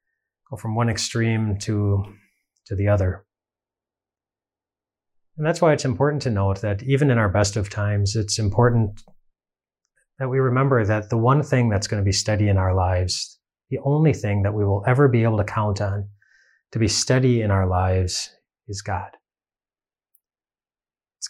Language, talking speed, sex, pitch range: English, 165 wpm, male, 100-115 Hz